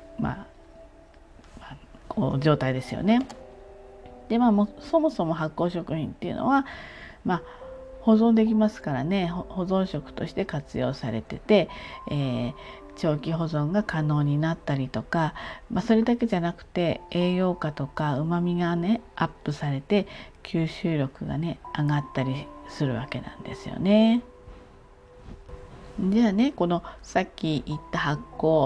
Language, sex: Japanese, female